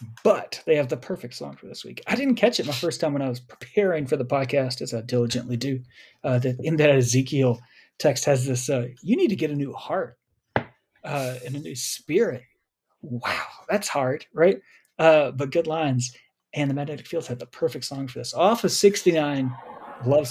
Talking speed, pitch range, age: 205 wpm, 125-190 Hz, 30-49